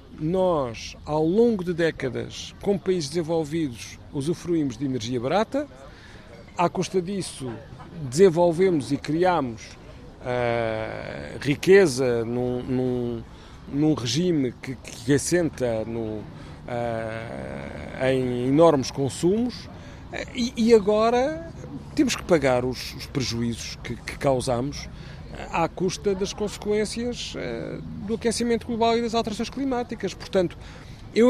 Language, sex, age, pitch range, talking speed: Portuguese, male, 50-69, 125-190 Hz, 110 wpm